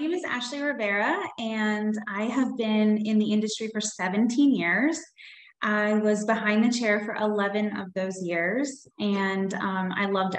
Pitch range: 200-235 Hz